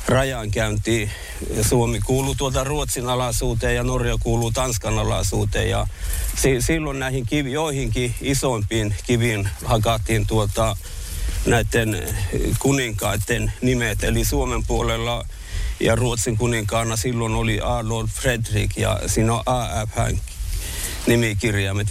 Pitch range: 105-120 Hz